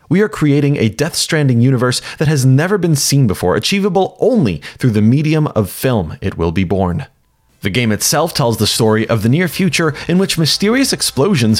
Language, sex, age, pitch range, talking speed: English, male, 30-49, 110-160 Hz, 190 wpm